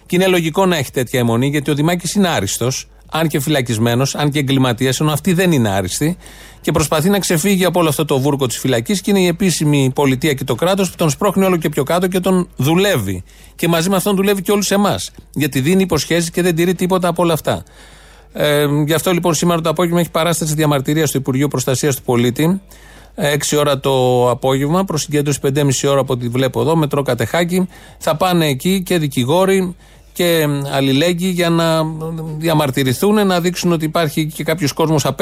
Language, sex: Greek, male